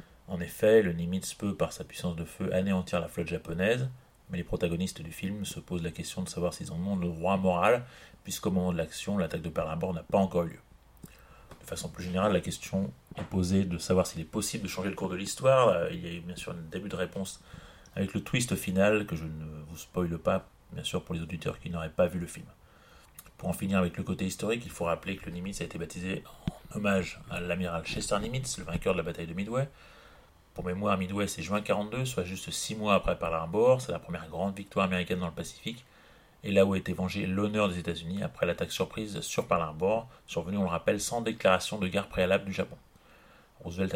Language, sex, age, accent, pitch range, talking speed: French, male, 30-49, French, 85-100 Hz, 235 wpm